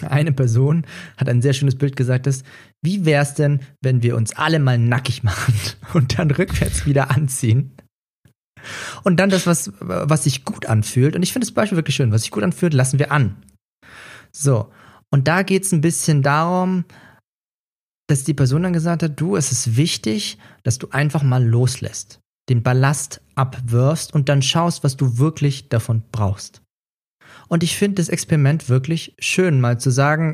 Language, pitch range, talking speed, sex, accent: German, 125-165 Hz, 180 wpm, male, German